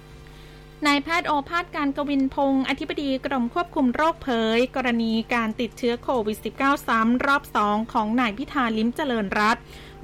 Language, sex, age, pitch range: Thai, female, 20-39, 220-265 Hz